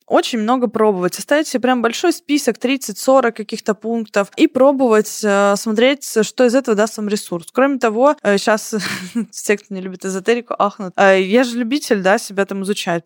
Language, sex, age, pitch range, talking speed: Russian, female, 20-39, 200-250 Hz, 180 wpm